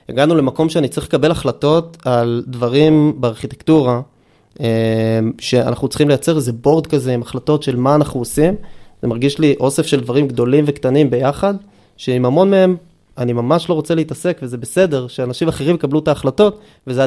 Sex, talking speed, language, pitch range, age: male, 160 wpm, Hebrew, 125-160 Hz, 20-39